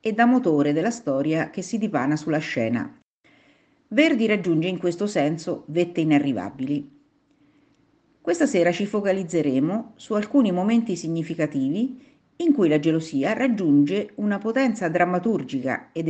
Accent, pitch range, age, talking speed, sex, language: native, 155-250 Hz, 50-69, 125 wpm, female, Italian